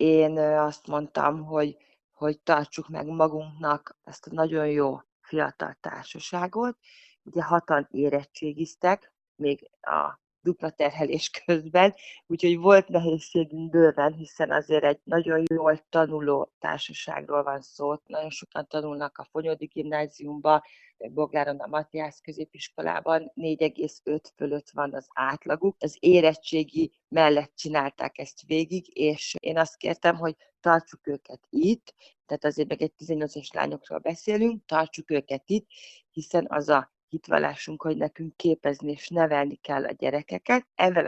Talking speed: 125 wpm